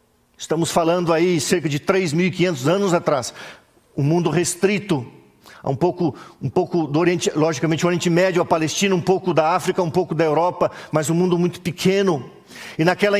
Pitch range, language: 170-220 Hz, Portuguese